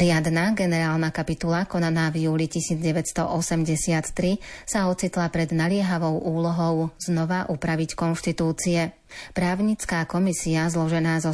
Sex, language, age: female, Slovak, 30-49